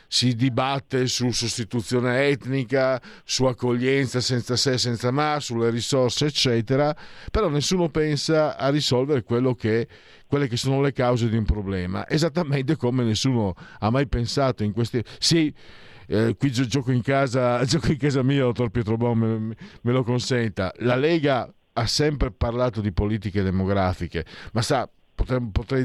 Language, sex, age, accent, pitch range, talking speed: Italian, male, 50-69, native, 105-135 Hz, 150 wpm